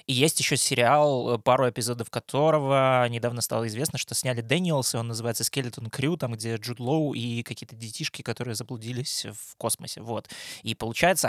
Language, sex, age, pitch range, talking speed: Russian, male, 20-39, 115-140 Hz, 170 wpm